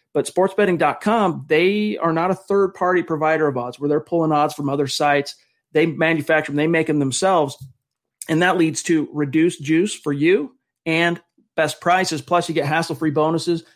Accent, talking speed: American, 175 wpm